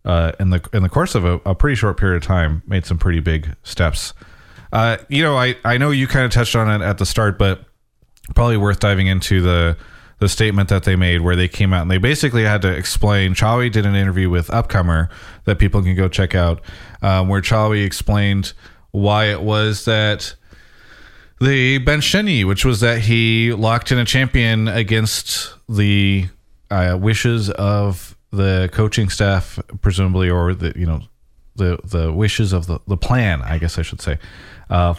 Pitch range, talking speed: 90-115 Hz, 190 wpm